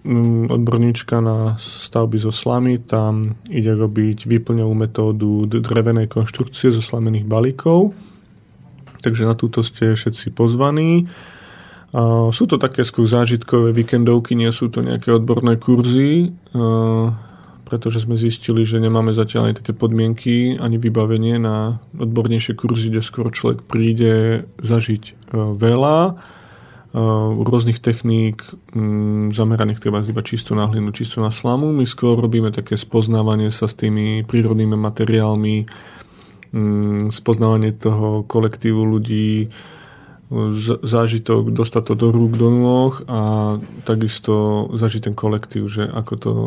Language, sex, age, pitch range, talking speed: Slovak, male, 30-49, 110-120 Hz, 120 wpm